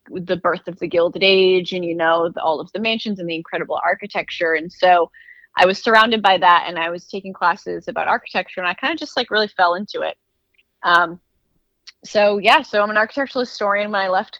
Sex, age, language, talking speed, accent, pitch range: female, 20-39, English, 220 wpm, American, 175-210 Hz